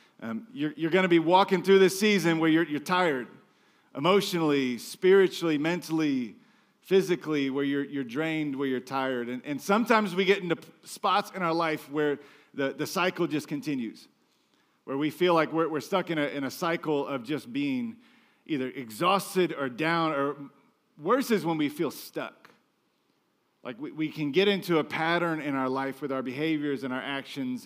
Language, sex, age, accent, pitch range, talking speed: English, male, 40-59, American, 140-185 Hz, 180 wpm